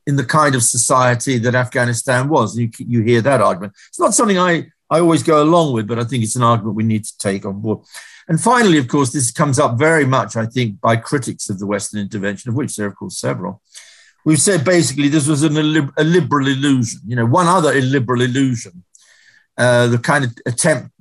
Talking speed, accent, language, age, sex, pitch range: 225 wpm, British, English, 50-69, male, 115-150 Hz